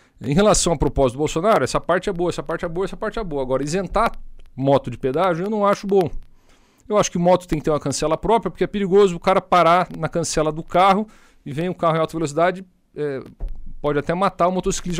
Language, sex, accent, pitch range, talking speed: Portuguese, male, Brazilian, 130-195 Hz, 240 wpm